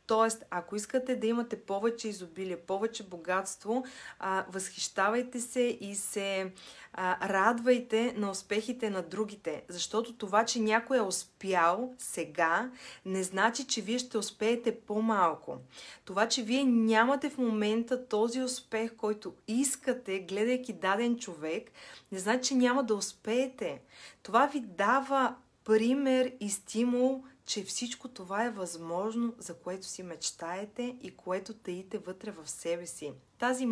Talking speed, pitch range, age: 130 wpm, 190-240 Hz, 30-49